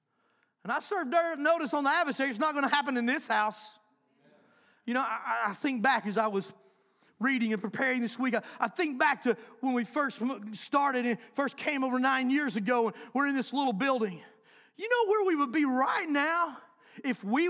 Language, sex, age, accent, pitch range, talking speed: English, male, 40-59, American, 225-315 Hz, 215 wpm